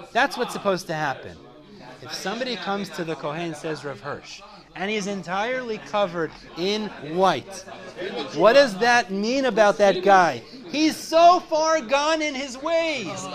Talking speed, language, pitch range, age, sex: 155 wpm, English, 175-270 Hz, 30-49, male